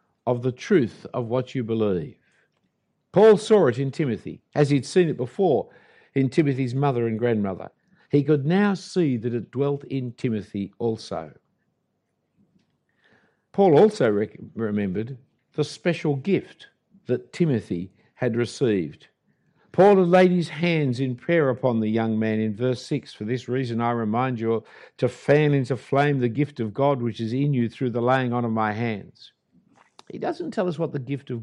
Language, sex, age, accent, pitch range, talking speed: English, male, 50-69, Australian, 115-145 Hz, 170 wpm